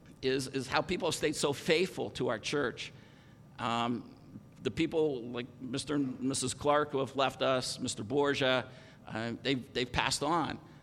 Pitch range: 130-180 Hz